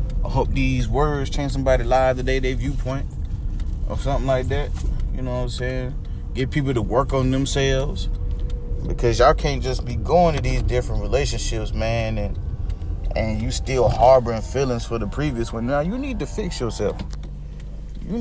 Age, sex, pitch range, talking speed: 30-49, male, 105-170 Hz, 175 wpm